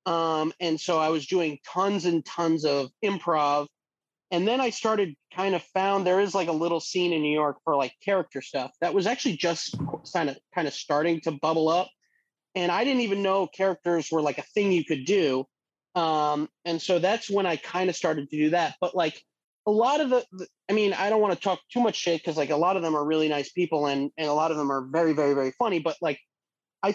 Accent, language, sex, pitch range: American, English, male, 155-195 Hz